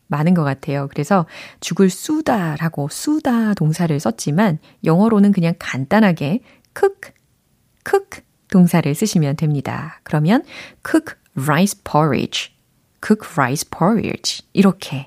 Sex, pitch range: female, 155-230 Hz